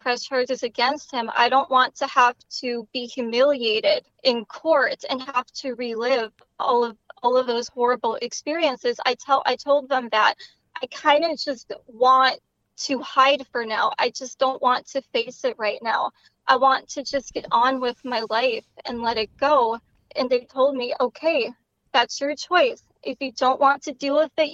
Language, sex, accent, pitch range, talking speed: English, female, American, 245-285 Hz, 190 wpm